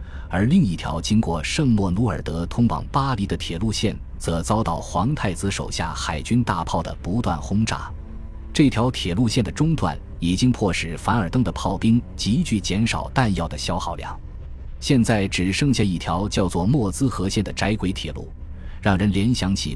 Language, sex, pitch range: Chinese, male, 80-110 Hz